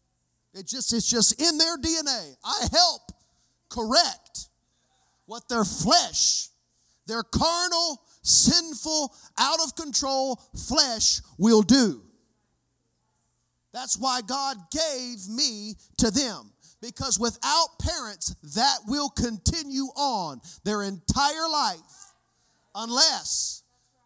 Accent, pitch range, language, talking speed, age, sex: American, 180-285 Hz, English, 95 wpm, 40-59, male